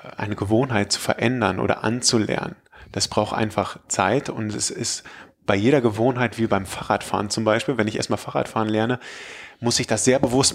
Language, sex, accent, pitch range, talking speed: German, male, German, 105-120 Hz, 175 wpm